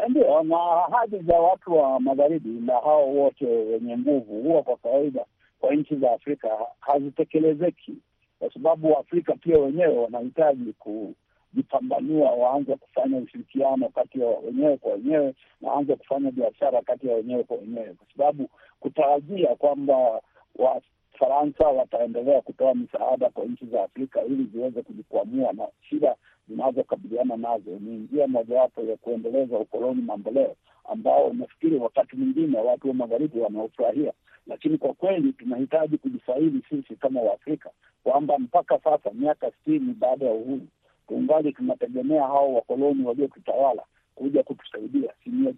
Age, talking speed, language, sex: 60-79, 135 wpm, Swahili, male